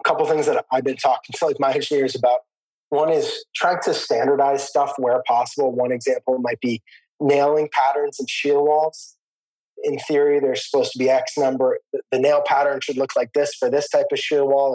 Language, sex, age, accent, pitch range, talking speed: English, male, 20-39, American, 130-160 Hz, 210 wpm